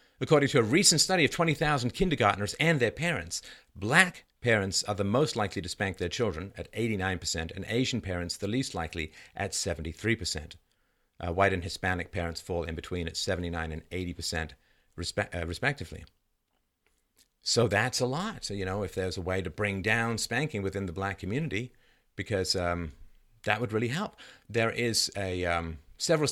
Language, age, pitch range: English, 50-69, 90-120 Hz